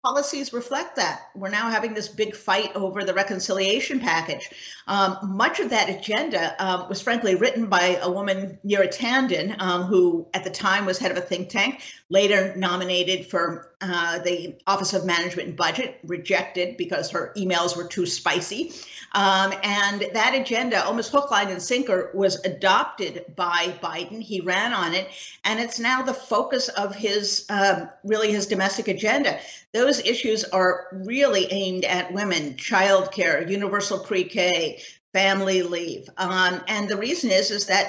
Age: 50-69